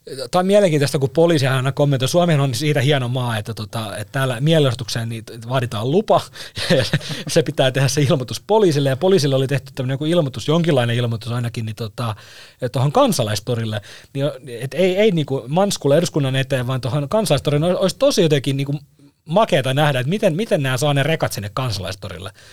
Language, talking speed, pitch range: Finnish, 160 wpm, 120-155 Hz